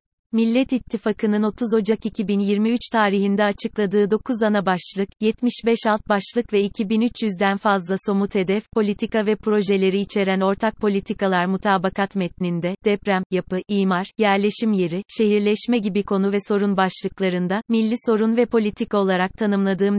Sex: female